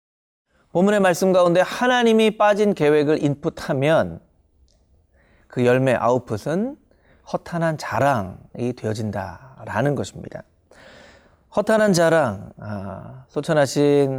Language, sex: Korean, male